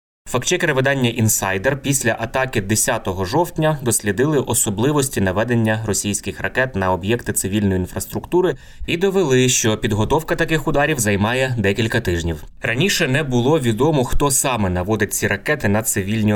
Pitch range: 105-130 Hz